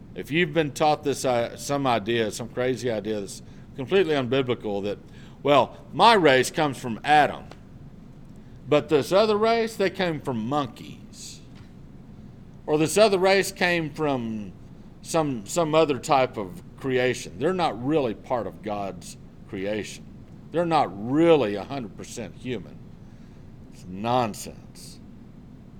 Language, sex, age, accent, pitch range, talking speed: English, male, 50-69, American, 115-150 Hz, 130 wpm